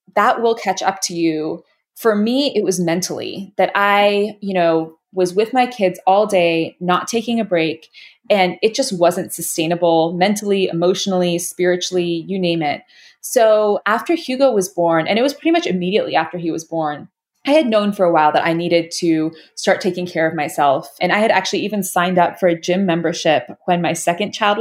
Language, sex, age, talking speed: English, female, 20-39, 200 wpm